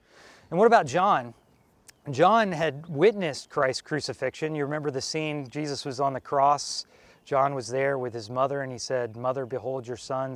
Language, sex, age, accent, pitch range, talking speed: English, male, 30-49, American, 125-155 Hz, 180 wpm